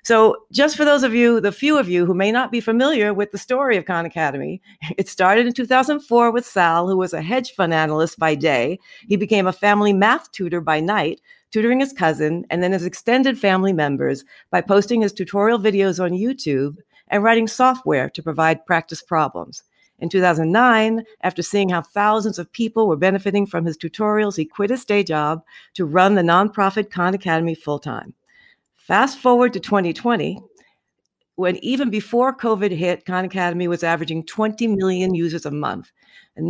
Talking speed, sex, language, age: 180 wpm, female, English, 50-69